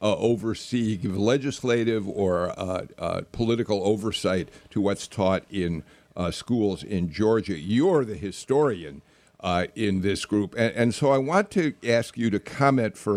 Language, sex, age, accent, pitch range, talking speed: English, male, 60-79, American, 105-140 Hz, 160 wpm